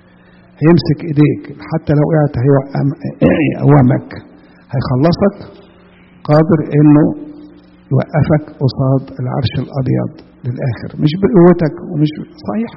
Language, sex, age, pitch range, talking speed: English, male, 50-69, 120-160 Hz, 90 wpm